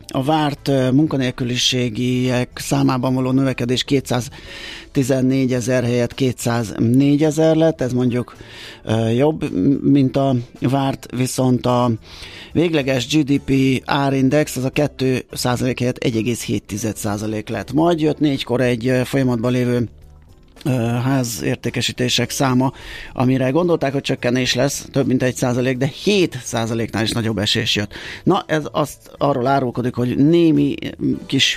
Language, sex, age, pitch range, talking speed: Hungarian, male, 30-49, 115-140 Hz, 115 wpm